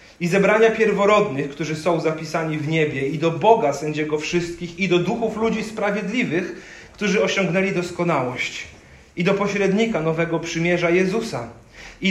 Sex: male